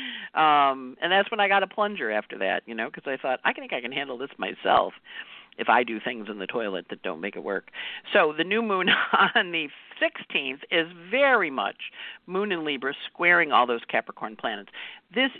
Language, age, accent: English, 50-69, American